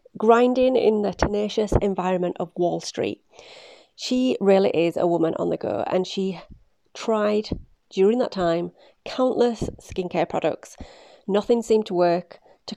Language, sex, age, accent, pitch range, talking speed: English, female, 30-49, British, 180-230 Hz, 140 wpm